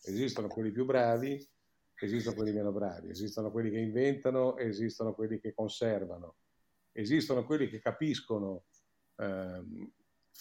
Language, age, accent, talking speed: Italian, 50-69, native, 120 wpm